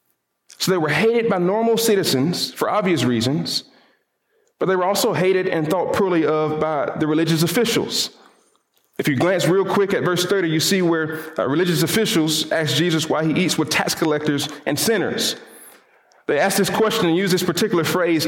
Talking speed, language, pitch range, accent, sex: 185 wpm, English, 160-195 Hz, American, male